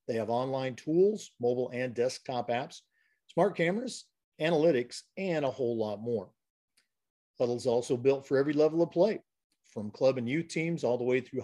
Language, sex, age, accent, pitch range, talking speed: English, male, 50-69, American, 125-170 Hz, 180 wpm